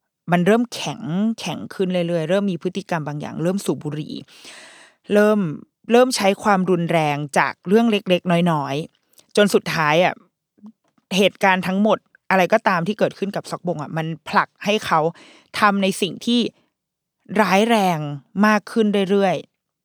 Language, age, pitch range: Thai, 20-39, 170-220 Hz